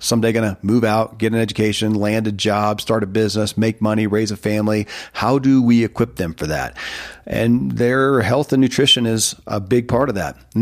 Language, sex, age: English, male, 40-59